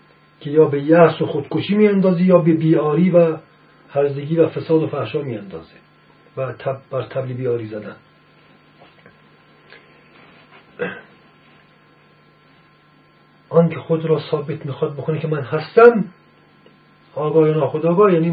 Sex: male